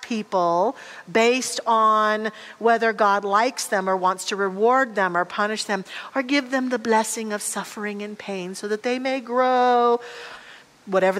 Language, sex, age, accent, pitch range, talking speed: English, female, 40-59, American, 215-320 Hz, 160 wpm